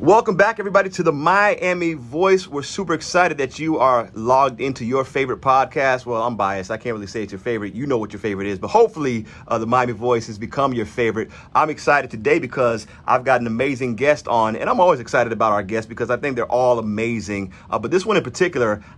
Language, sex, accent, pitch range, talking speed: English, male, American, 115-140 Hz, 230 wpm